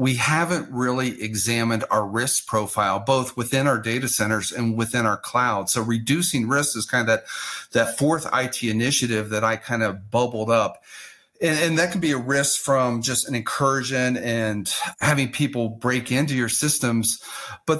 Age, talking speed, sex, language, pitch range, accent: 40-59, 175 wpm, male, English, 115-140 Hz, American